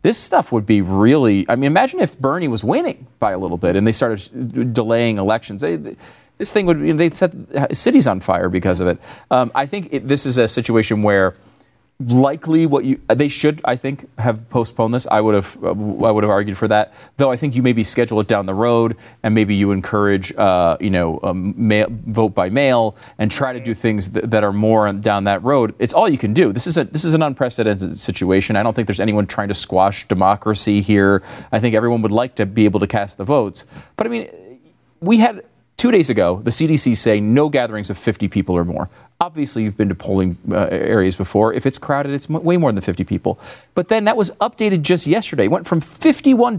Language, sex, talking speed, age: English, male, 225 wpm, 30-49